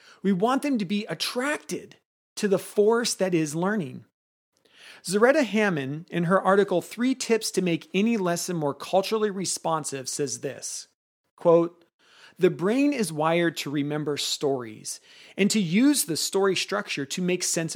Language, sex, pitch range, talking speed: English, male, 160-215 Hz, 150 wpm